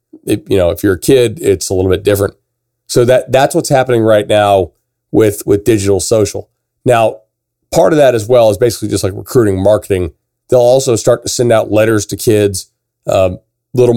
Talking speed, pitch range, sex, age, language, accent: 200 wpm, 100-125 Hz, male, 40-59, English, American